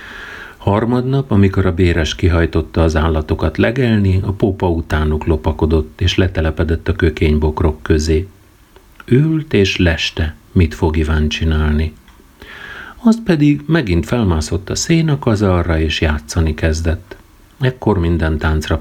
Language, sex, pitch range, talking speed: Hungarian, male, 80-120 Hz, 120 wpm